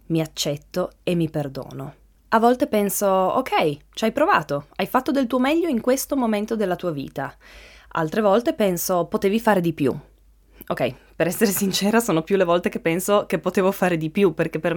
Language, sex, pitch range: Italian, female, 160-210 Hz